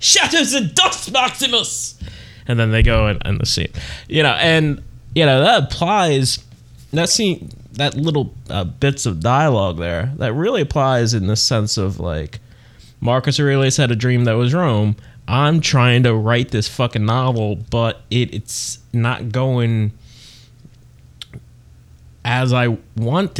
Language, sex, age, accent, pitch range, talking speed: English, male, 20-39, American, 115-150 Hz, 150 wpm